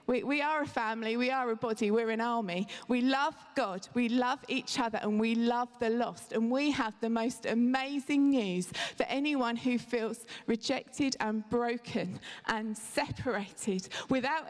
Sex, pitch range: female, 235-310 Hz